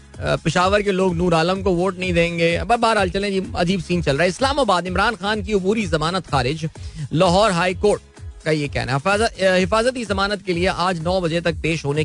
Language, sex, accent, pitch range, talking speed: Hindi, male, native, 140-185 Hz, 170 wpm